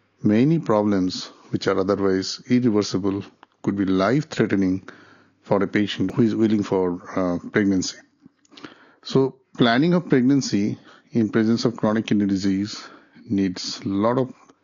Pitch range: 100-130 Hz